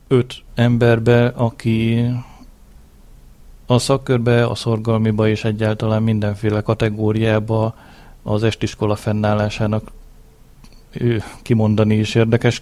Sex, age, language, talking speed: male, 30-49, Hungarian, 80 wpm